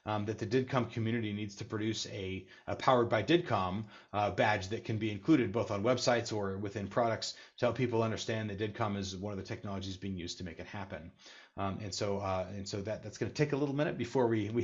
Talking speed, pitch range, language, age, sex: 240 wpm, 100-120 Hz, English, 30-49, male